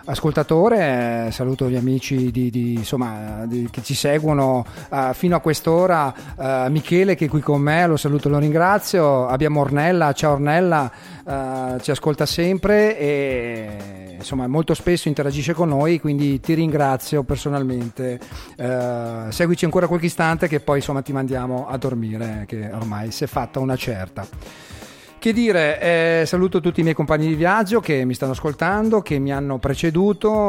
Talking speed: 165 wpm